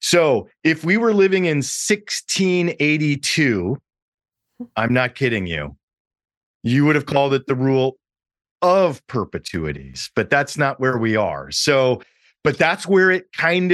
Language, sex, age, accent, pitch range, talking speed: English, male, 40-59, American, 130-175 Hz, 140 wpm